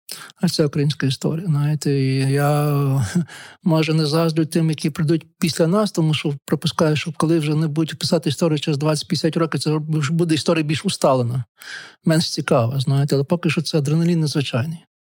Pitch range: 145-165 Hz